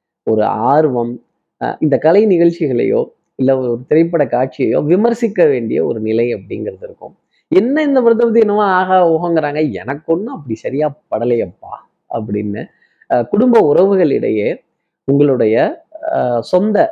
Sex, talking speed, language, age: male, 105 wpm, Tamil, 20-39